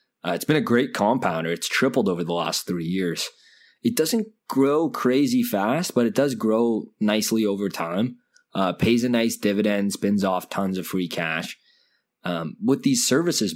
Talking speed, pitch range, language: 175 wpm, 90-135 Hz, English